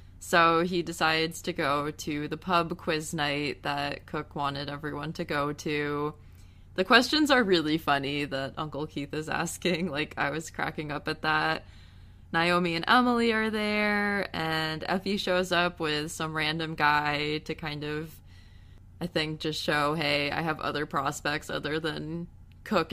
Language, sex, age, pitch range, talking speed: English, female, 20-39, 145-185 Hz, 160 wpm